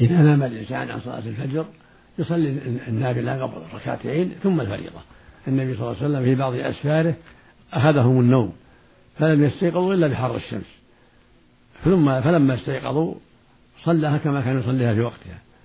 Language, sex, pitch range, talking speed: Arabic, male, 120-145 Hz, 145 wpm